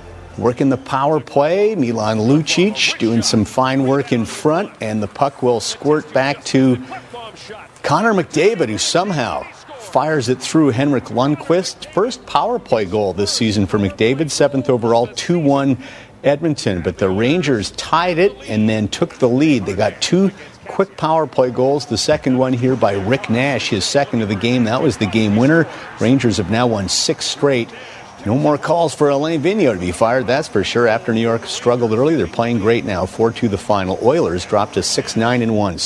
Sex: male